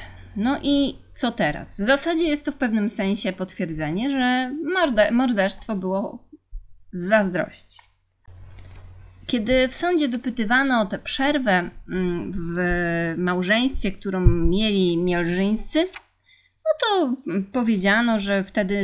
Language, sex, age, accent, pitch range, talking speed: Polish, female, 30-49, native, 180-260 Hz, 110 wpm